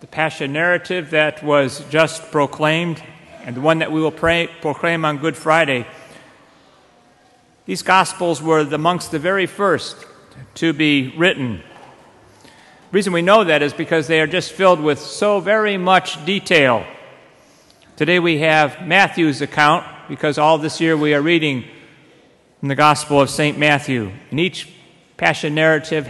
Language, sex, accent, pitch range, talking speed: English, male, American, 140-165 Hz, 150 wpm